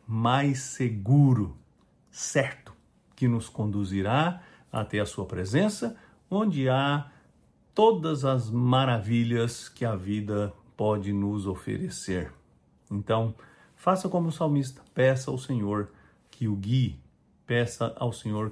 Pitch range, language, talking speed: 100-130 Hz, English, 115 wpm